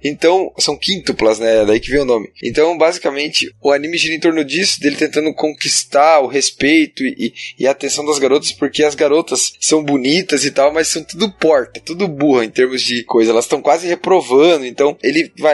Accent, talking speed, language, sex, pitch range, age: Brazilian, 205 wpm, Portuguese, male, 130-170 Hz, 10-29